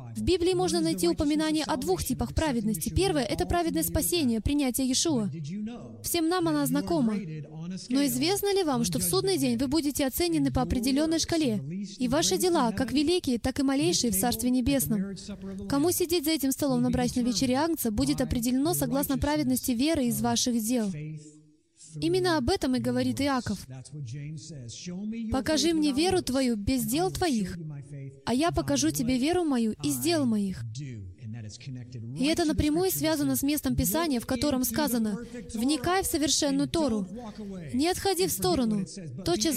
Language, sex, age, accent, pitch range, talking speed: Russian, female, 20-39, native, 210-315 Hz, 155 wpm